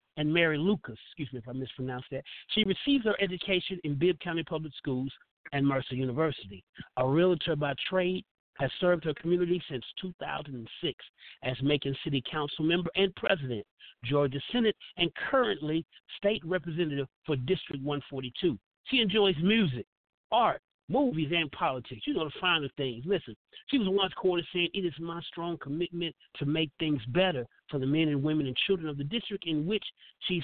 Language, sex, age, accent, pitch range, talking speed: English, male, 50-69, American, 140-185 Hz, 170 wpm